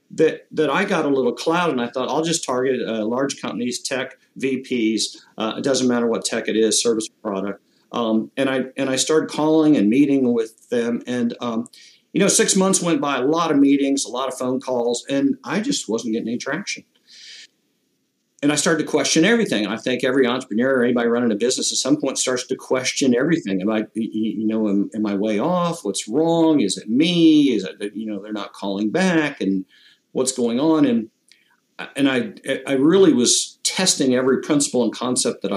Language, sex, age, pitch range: English, male, 50-69, 115-165 Hz